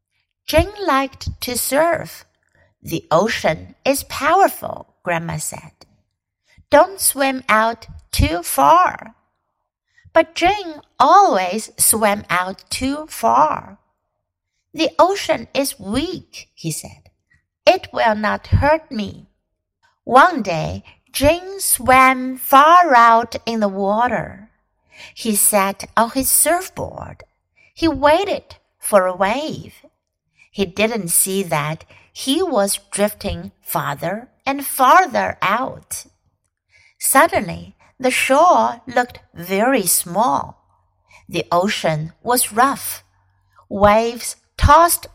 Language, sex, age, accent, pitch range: Chinese, female, 60-79, American, 195-275 Hz